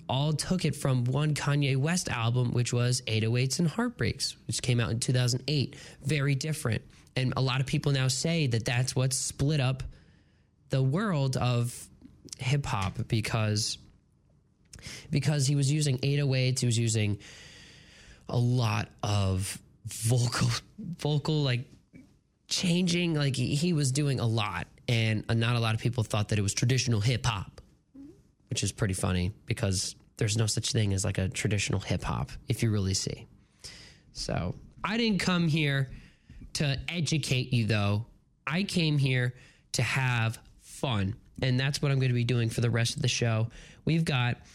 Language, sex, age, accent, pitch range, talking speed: English, male, 20-39, American, 120-155 Hz, 165 wpm